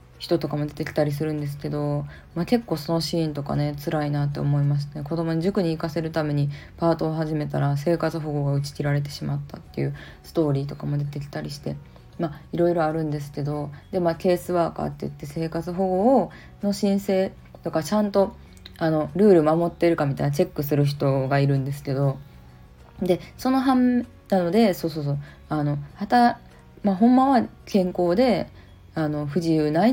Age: 20-39